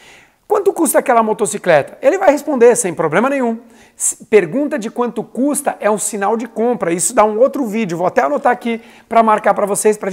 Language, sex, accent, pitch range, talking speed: Portuguese, male, Brazilian, 190-255 Hz, 200 wpm